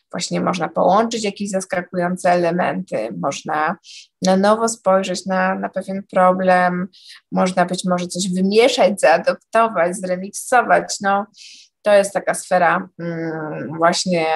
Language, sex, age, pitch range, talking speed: Polish, female, 20-39, 175-200 Hz, 115 wpm